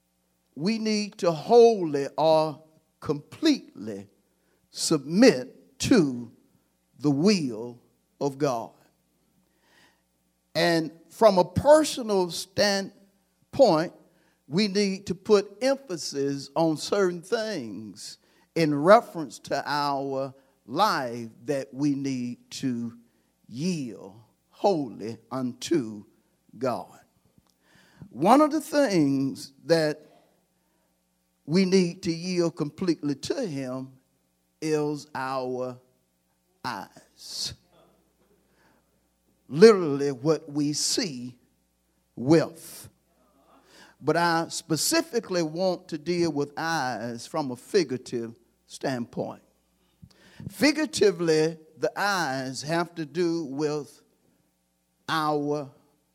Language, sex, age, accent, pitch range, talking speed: English, male, 50-69, American, 120-175 Hz, 85 wpm